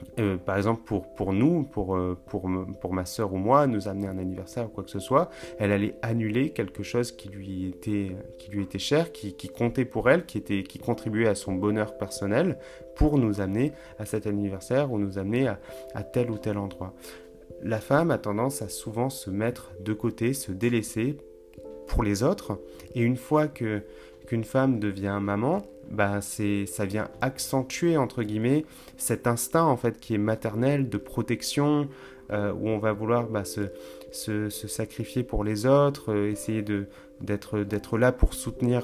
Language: French